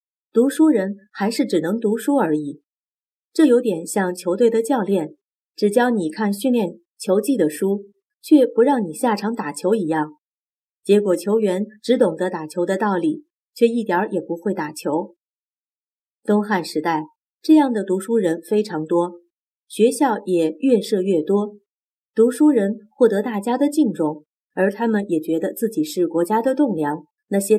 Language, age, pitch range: Chinese, 30-49, 165-235 Hz